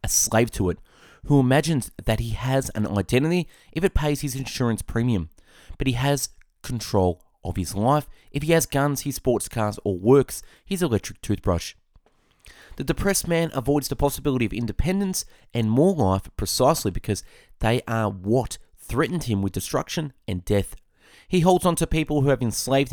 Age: 30-49